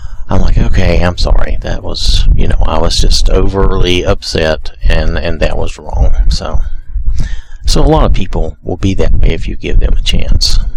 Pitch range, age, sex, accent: 80-100 Hz, 40-59, male, American